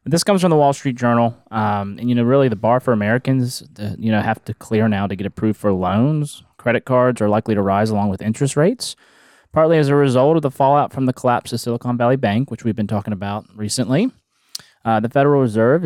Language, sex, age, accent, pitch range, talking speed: English, male, 20-39, American, 110-130 Hz, 235 wpm